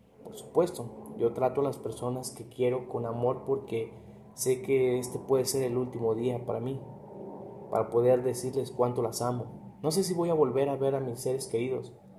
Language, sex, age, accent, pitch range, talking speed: Spanish, male, 30-49, Mexican, 120-140 Hz, 195 wpm